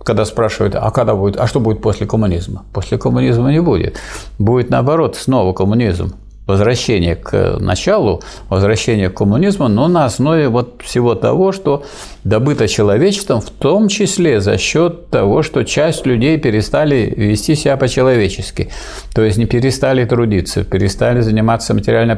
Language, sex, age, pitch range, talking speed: Russian, male, 50-69, 100-130 Hz, 145 wpm